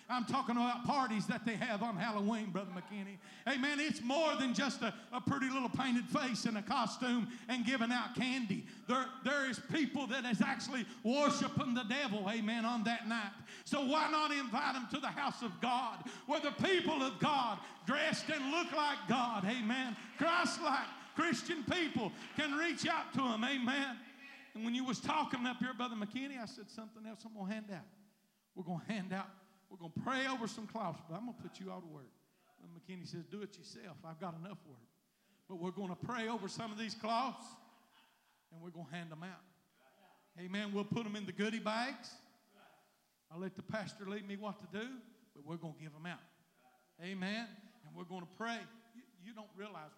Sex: male